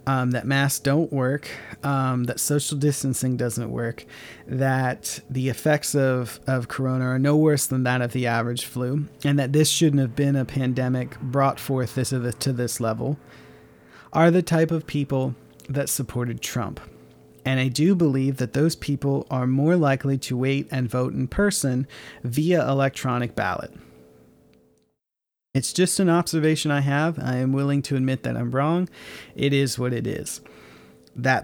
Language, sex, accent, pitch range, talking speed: English, male, American, 125-145 Hz, 165 wpm